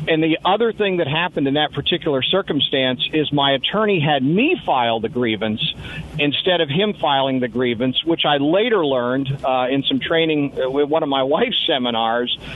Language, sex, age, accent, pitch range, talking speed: English, male, 50-69, American, 130-160 Hz, 180 wpm